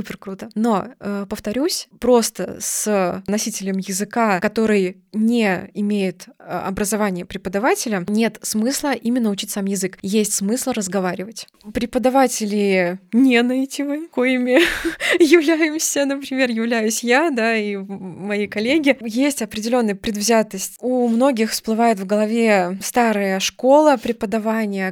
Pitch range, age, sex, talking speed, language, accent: 195-250 Hz, 20-39, female, 110 wpm, Russian, native